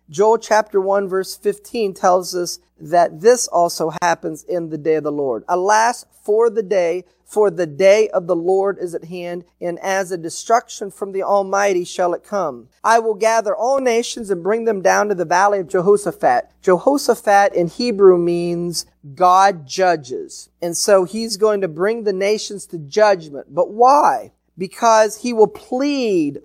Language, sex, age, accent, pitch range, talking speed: English, male, 40-59, American, 180-220 Hz, 170 wpm